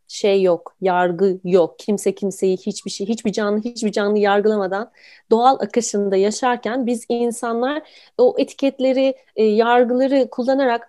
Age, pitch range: 30-49, 195-245 Hz